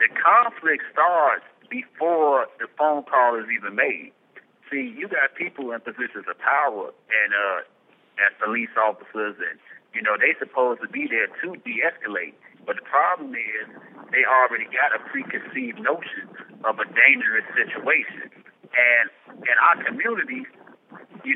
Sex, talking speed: male, 145 wpm